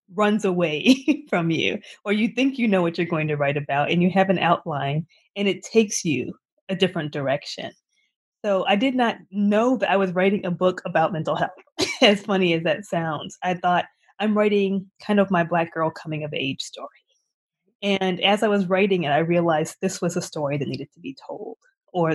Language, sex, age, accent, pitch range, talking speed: English, female, 20-39, American, 165-205 Hz, 210 wpm